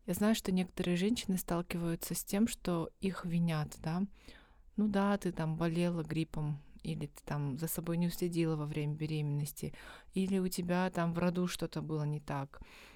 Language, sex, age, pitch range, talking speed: Russian, female, 20-39, 160-200 Hz, 175 wpm